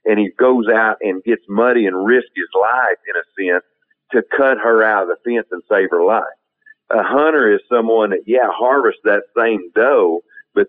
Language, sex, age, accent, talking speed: English, male, 50-69, American, 200 wpm